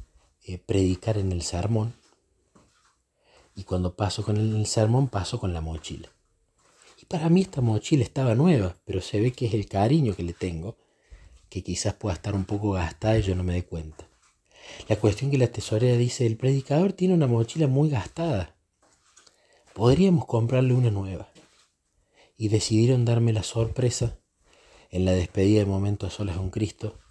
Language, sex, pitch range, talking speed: Spanish, male, 95-120 Hz, 170 wpm